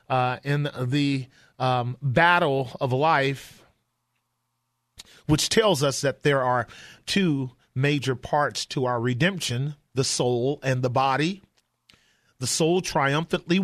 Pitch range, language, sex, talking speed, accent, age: 135-165 Hz, English, male, 120 wpm, American, 40-59